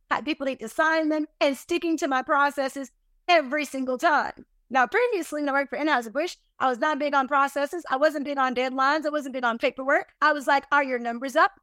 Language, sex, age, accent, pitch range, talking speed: English, female, 30-49, American, 275-345 Hz, 235 wpm